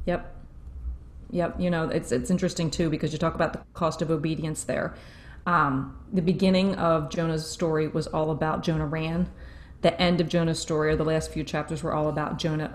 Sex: female